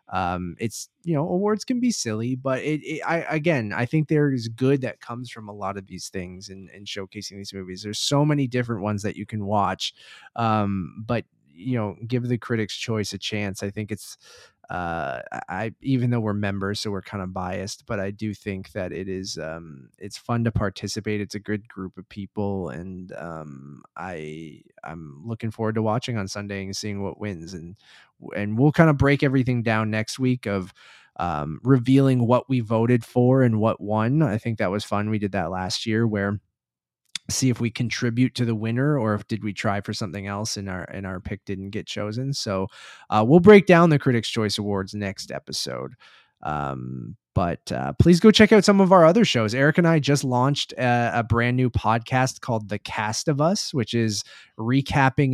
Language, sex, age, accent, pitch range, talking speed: English, male, 20-39, American, 100-125 Hz, 205 wpm